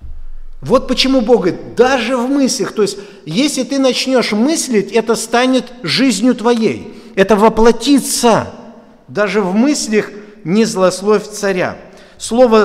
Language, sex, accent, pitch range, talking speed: Russian, male, native, 175-260 Hz, 120 wpm